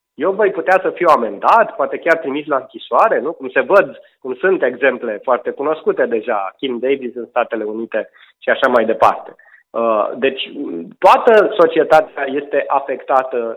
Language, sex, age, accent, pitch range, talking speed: Romanian, male, 30-49, native, 140-230 Hz, 155 wpm